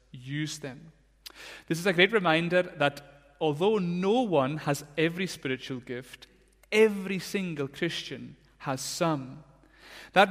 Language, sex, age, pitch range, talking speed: English, male, 30-49, 145-185 Hz, 120 wpm